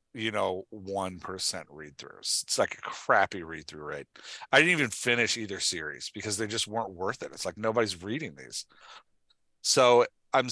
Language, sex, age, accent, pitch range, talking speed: English, male, 40-59, American, 90-120 Hz, 165 wpm